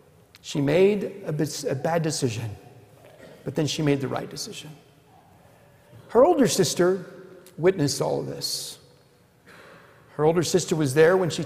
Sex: male